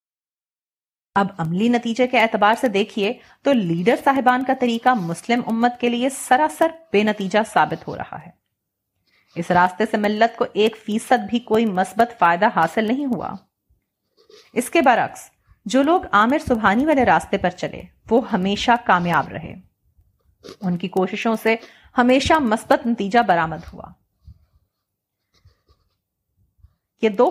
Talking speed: 140 wpm